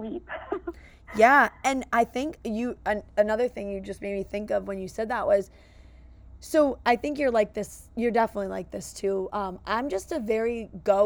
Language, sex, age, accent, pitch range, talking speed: English, female, 20-39, American, 195-230 Hz, 190 wpm